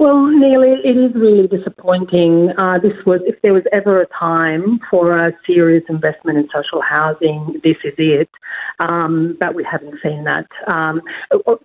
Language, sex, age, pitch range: English, female, 40-59, 170-205 Hz